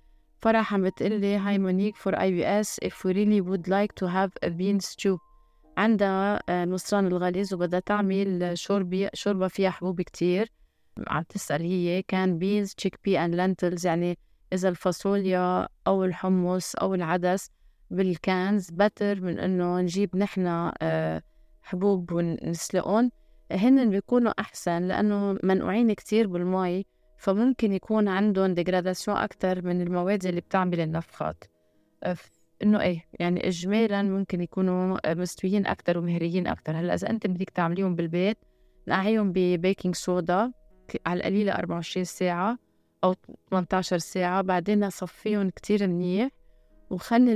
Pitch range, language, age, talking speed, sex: 180-200 Hz, Arabic, 20-39, 125 wpm, female